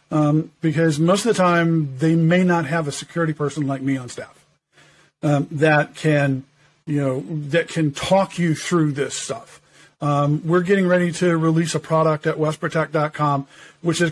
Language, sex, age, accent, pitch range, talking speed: English, male, 50-69, American, 155-180 Hz, 175 wpm